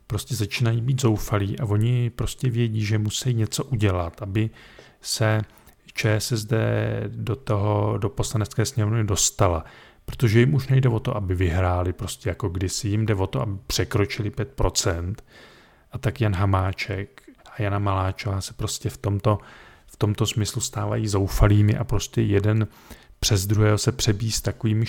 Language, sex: Czech, male